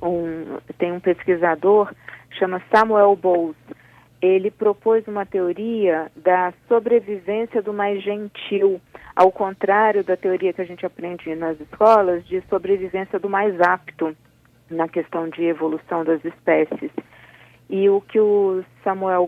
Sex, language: female, Portuguese